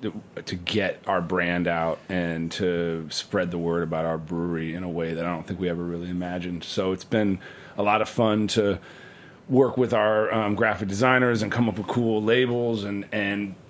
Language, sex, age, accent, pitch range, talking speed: English, male, 30-49, American, 90-110 Hz, 200 wpm